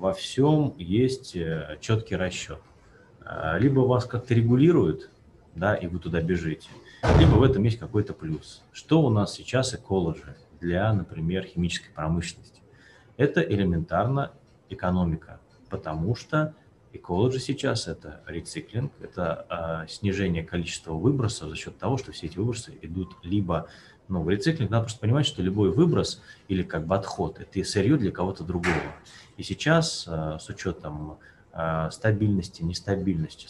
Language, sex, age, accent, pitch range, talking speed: Russian, male, 30-49, native, 80-120 Hz, 140 wpm